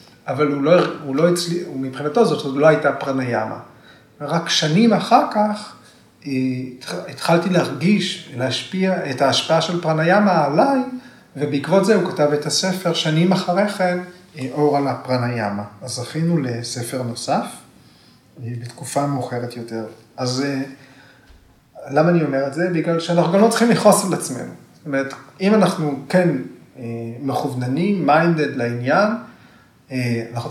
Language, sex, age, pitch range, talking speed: Hebrew, male, 30-49, 130-175 Hz, 130 wpm